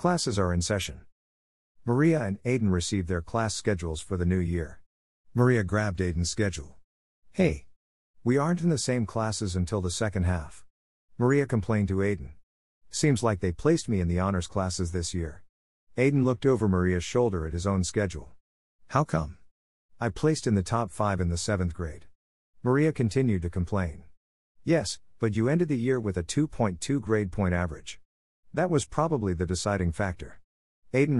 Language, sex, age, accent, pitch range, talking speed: English, male, 50-69, American, 85-115 Hz, 170 wpm